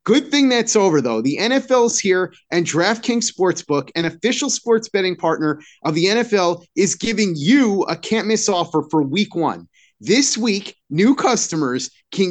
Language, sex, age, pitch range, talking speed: English, male, 30-49, 175-245 Hz, 165 wpm